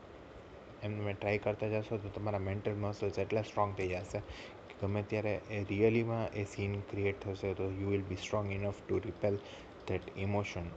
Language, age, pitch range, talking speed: Gujarati, 20-39, 90-105 Hz, 175 wpm